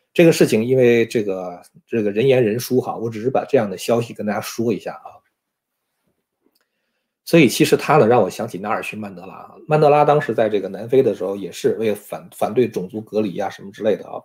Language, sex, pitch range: Chinese, male, 110-155 Hz